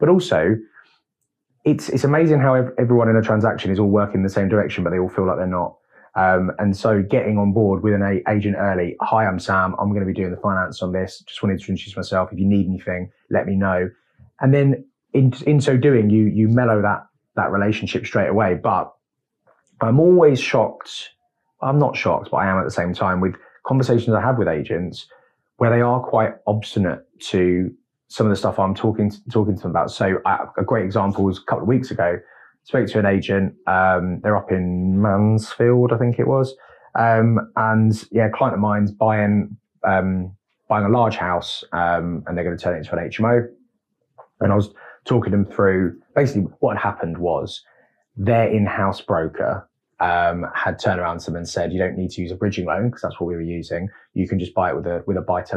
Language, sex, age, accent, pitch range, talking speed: English, male, 20-39, British, 95-115 Hz, 220 wpm